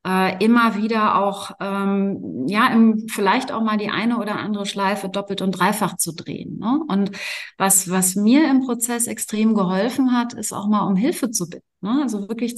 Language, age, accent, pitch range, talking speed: German, 30-49, German, 195-230 Hz, 190 wpm